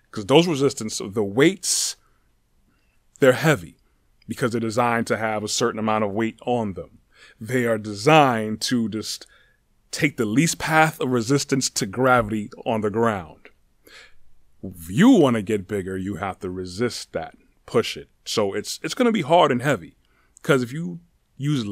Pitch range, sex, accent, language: 95-130 Hz, male, American, English